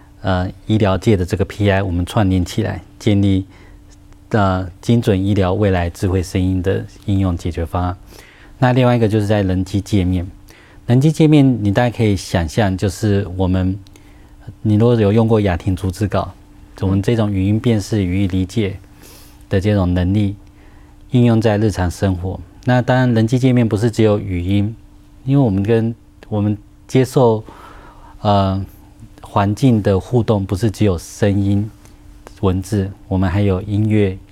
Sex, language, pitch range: male, Chinese, 95-110 Hz